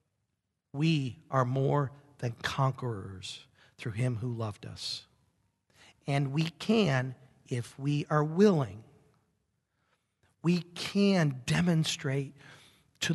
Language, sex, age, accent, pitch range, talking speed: English, male, 50-69, American, 125-160 Hz, 95 wpm